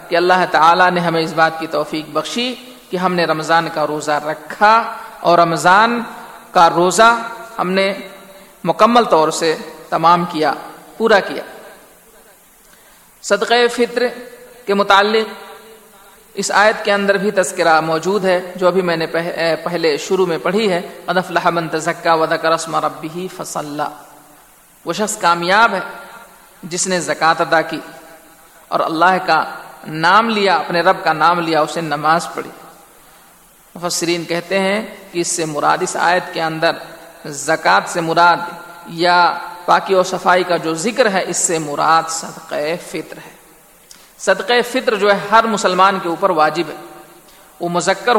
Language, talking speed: Urdu, 135 wpm